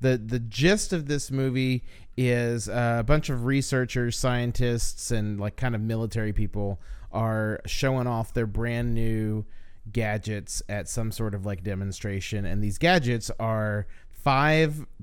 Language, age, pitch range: English, 30-49, 100-125 Hz